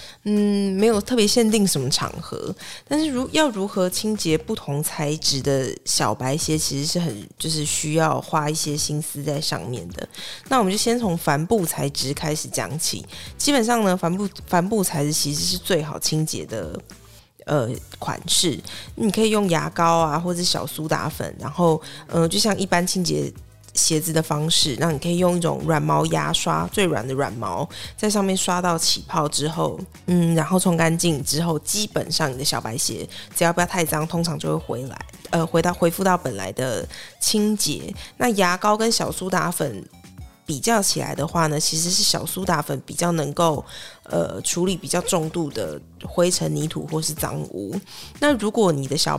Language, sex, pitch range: Chinese, female, 150-180 Hz